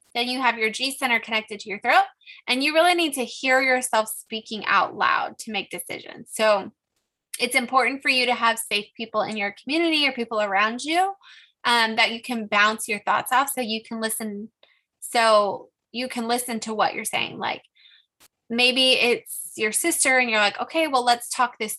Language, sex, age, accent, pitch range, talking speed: English, female, 10-29, American, 215-265 Hz, 200 wpm